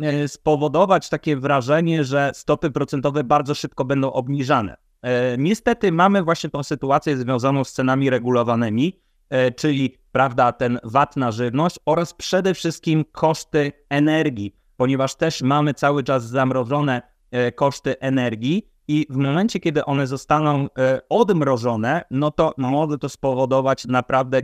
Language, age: Polish, 30-49